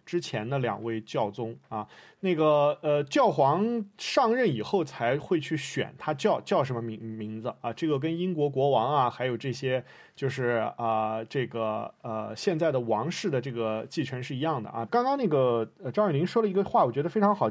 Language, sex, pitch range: Chinese, male, 130-200 Hz